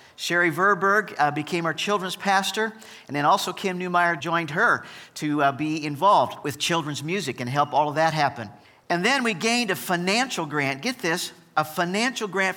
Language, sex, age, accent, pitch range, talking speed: English, male, 50-69, American, 150-190 Hz, 185 wpm